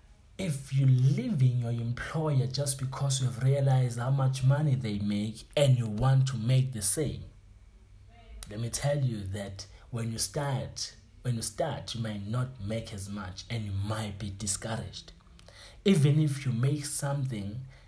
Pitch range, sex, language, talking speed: 105-130 Hz, male, English, 165 wpm